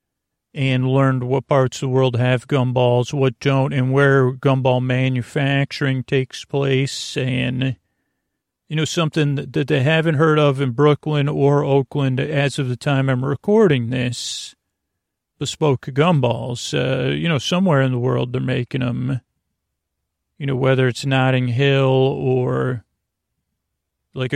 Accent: American